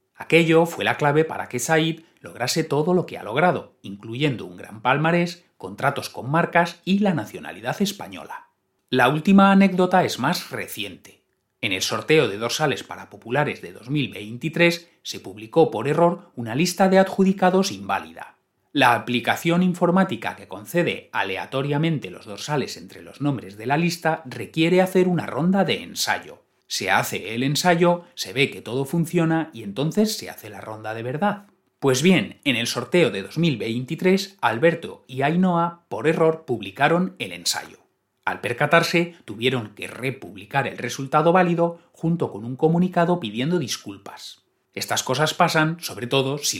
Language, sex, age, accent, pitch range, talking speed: Spanish, male, 30-49, Spanish, 125-170 Hz, 155 wpm